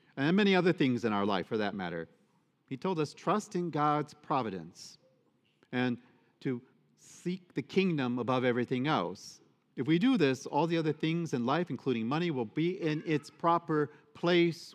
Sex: male